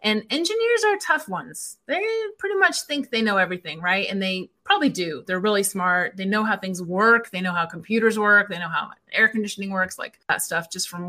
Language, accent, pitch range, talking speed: English, American, 195-265 Hz, 220 wpm